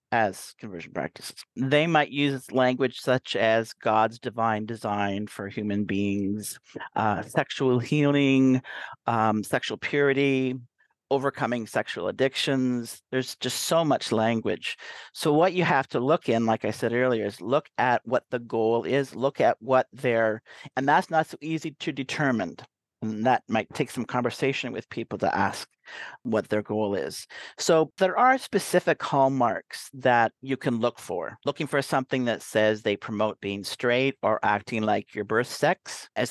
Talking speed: 160 wpm